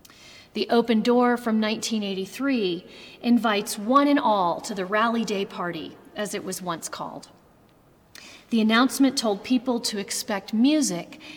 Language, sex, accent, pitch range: English, female, American, 185-235 Hz